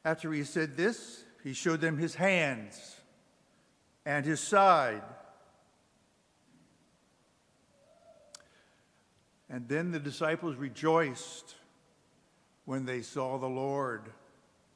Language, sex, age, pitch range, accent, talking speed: English, male, 60-79, 150-200 Hz, American, 90 wpm